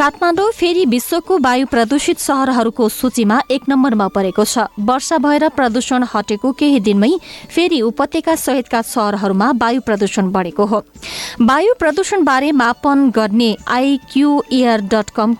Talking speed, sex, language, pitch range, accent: 150 wpm, female, English, 210-265 Hz, Indian